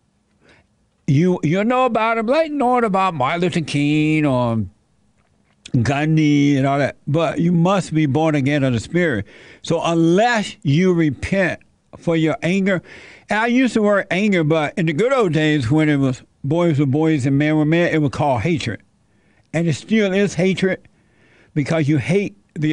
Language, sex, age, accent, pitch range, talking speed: English, male, 60-79, American, 130-165 Hz, 175 wpm